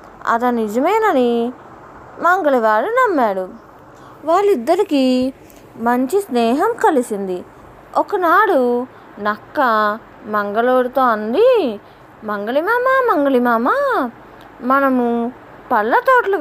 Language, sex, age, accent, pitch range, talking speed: Telugu, female, 20-39, native, 230-345 Hz, 60 wpm